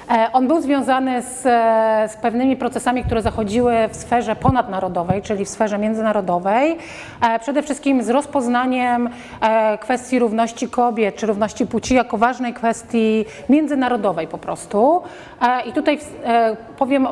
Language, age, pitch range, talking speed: Polish, 30-49, 215-255 Hz, 125 wpm